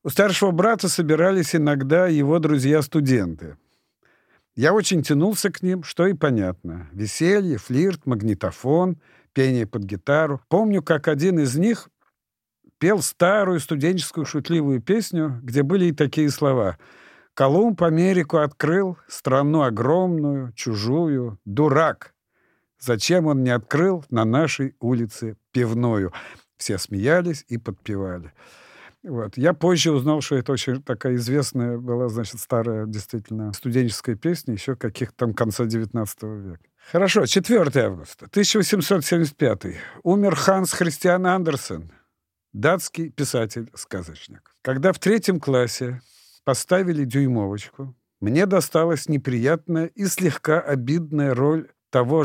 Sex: male